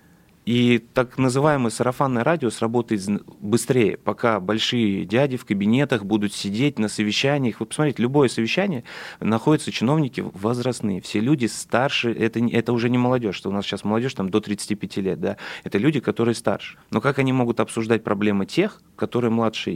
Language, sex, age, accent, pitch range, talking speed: Russian, male, 30-49, native, 105-120 Hz, 165 wpm